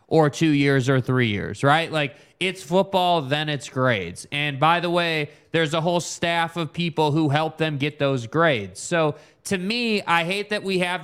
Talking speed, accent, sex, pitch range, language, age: 200 wpm, American, male, 150-190 Hz, English, 20-39